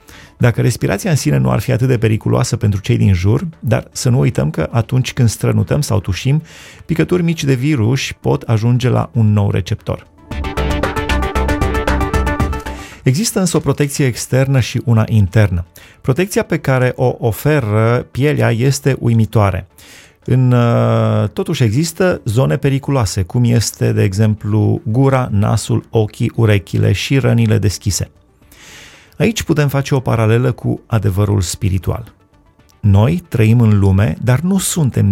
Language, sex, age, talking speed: Romanian, male, 30-49, 135 wpm